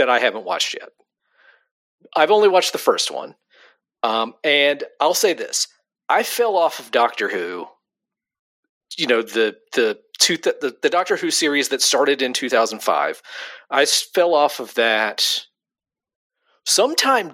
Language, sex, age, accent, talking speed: English, male, 40-59, American, 150 wpm